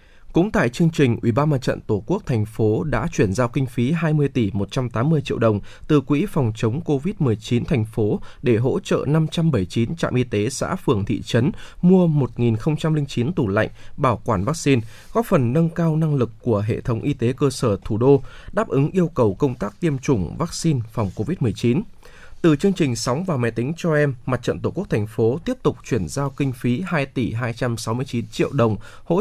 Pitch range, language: 115-155 Hz, Vietnamese